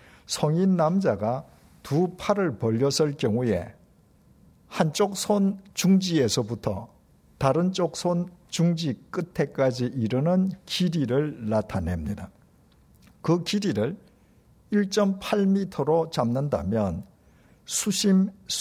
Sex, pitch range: male, 110-180 Hz